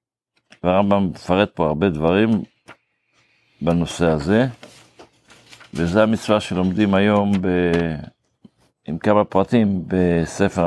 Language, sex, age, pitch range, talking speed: Hebrew, male, 50-69, 90-110 Hz, 90 wpm